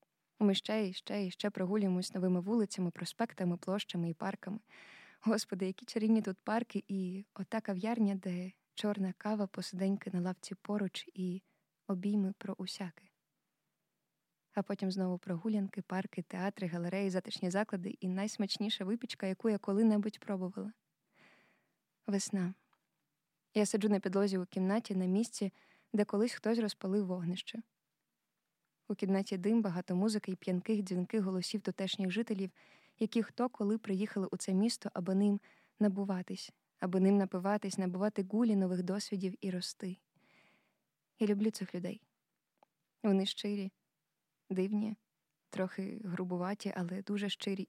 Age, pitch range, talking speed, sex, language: 20-39, 185-210 Hz, 130 wpm, female, Ukrainian